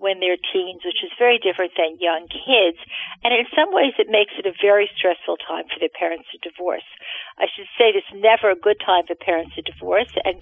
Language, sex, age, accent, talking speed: English, female, 50-69, American, 225 wpm